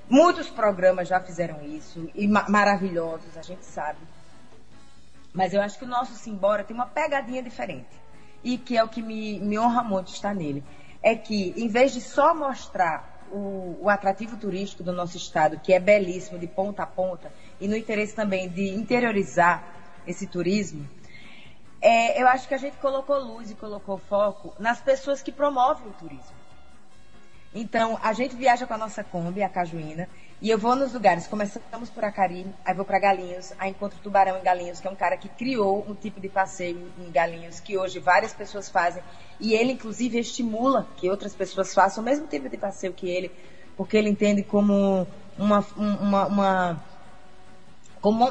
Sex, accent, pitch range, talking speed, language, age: female, Brazilian, 185-225 Hz, 180 wpm, Portuguese, 20-39